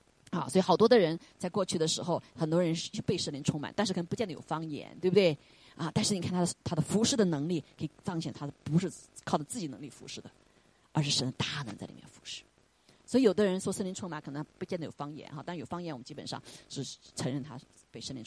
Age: 30-49